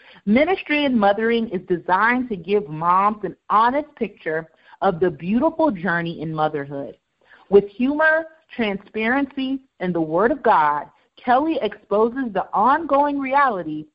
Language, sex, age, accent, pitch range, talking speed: English, female, 40-59, American, 185-260 Hz, 130 wpm